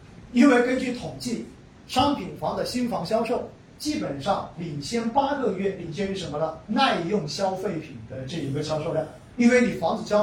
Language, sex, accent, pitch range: Chinese, male, native, 155-235 Hz